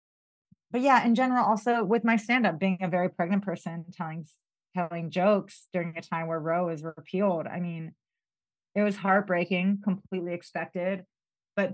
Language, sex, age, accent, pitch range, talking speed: English, female, 30-49, American, 170-200 Hz, 160 wpm